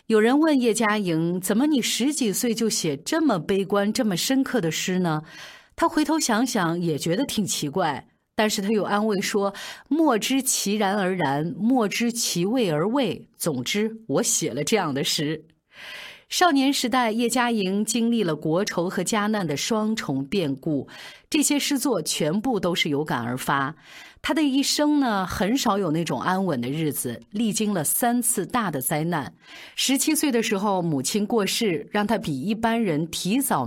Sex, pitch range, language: female, 160-235 Hz, Chinese